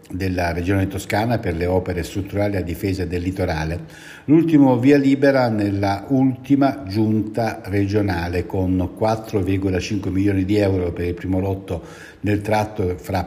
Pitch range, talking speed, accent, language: 95-115 Hz, 135 wpm, native, Italian